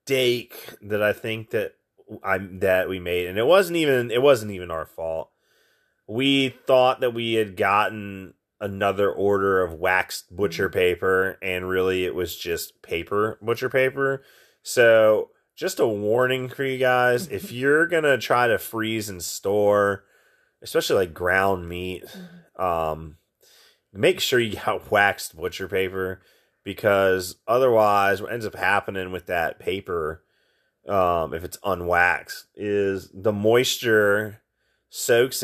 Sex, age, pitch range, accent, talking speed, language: male, 30-49, 95-125 Hz, American, 140 wpm, English